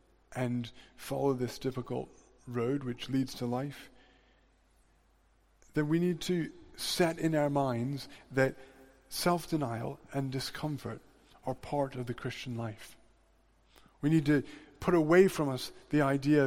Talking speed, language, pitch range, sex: 130 wpm, English, 125-155 Hz, male